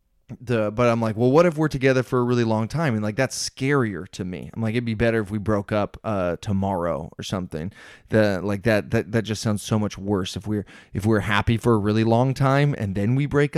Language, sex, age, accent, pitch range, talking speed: English, male, 20-39, American, 105-130 Hz, 250 wpm